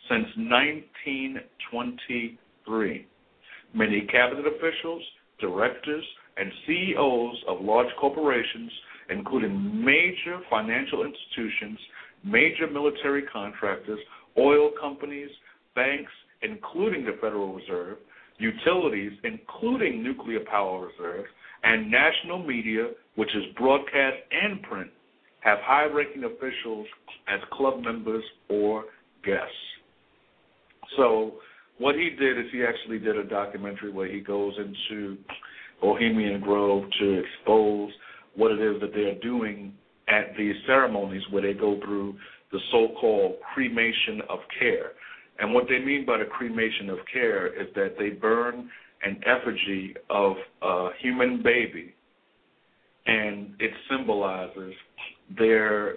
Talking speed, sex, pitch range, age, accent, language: 115 wpm, male, 105-150 Hz, 60-79, American, English